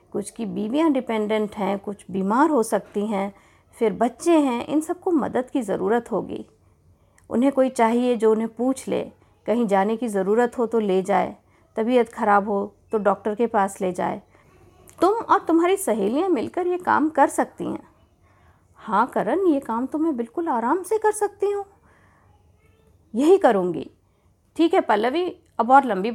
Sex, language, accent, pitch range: female, Hindi, native, 200-280 Hz